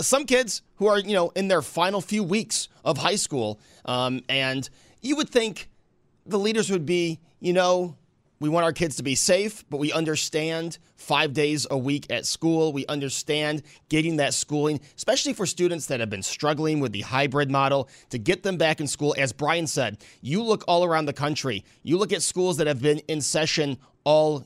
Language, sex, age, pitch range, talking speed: English, male, 30-49, 135-180 Hz, 200 wpm